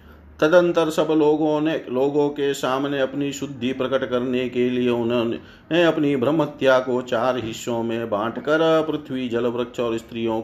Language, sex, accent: Hindi, male, native